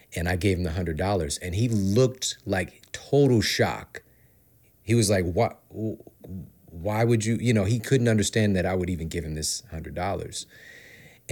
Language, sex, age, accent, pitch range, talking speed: English, male, 30-49, American, 95-115 Hz, 170 wpm